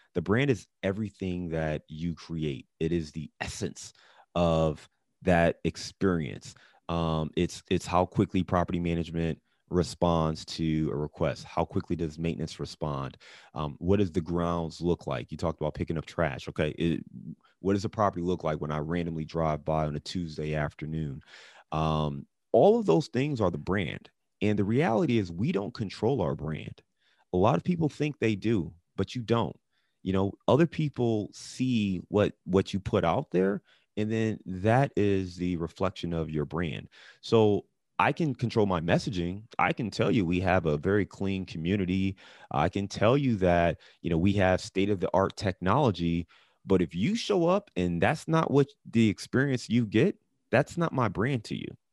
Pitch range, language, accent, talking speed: 85-115 Hz, English, American, 180 wpm